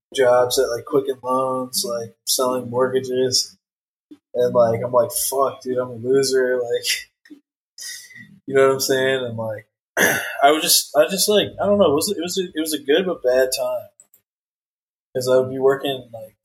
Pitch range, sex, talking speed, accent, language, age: 120-150 Hz, male, 185 wpm, American, English, 20-39